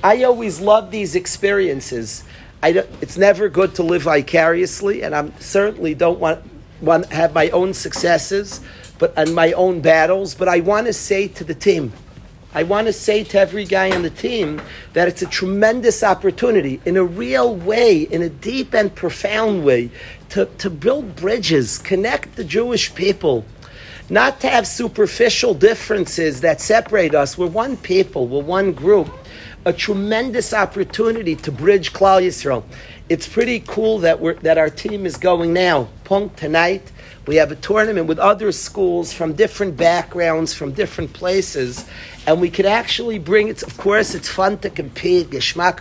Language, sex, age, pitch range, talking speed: English, male, 50-69, 165-210 Hz, 170 wpm